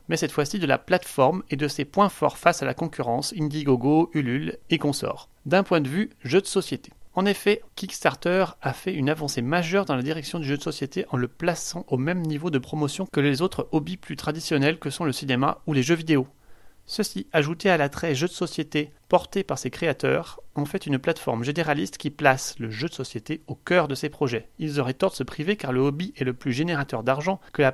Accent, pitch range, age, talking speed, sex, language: French, 135-180 Hz, 30-49, 230 wpm, male, French